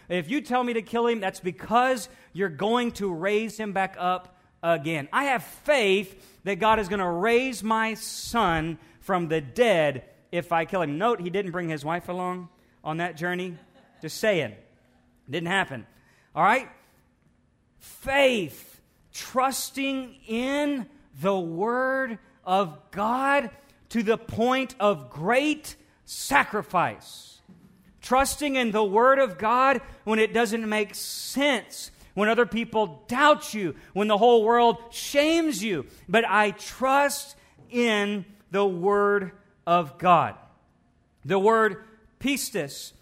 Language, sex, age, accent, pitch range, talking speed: English, male, 40-59, American, 185-240 Hz, 135 wpm